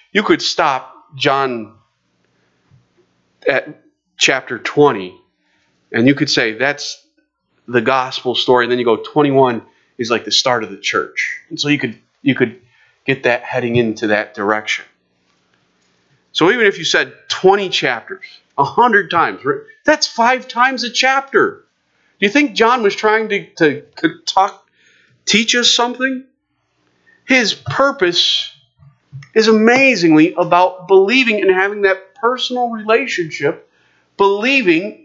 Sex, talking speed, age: male, 135 wpm, 40-59